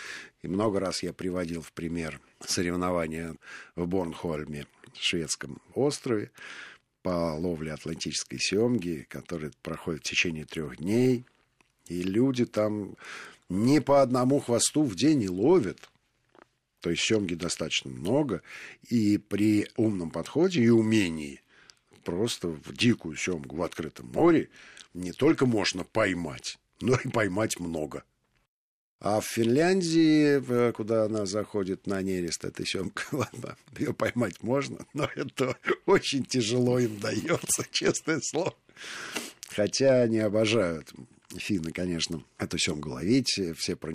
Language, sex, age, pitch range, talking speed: Russian, male, 50-69, 85-115 Hz, 125 wpm